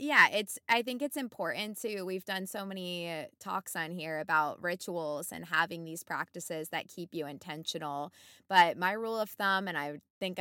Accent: American